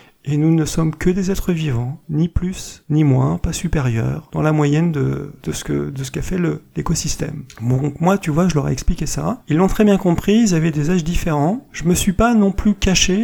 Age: 40-59